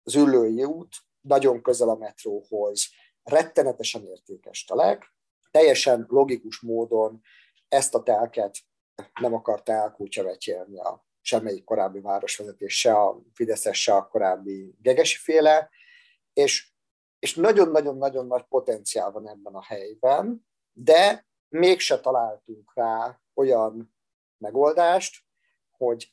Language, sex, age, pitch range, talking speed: Hungarian, male, 50-69, 110-160 Hz, 105 wpm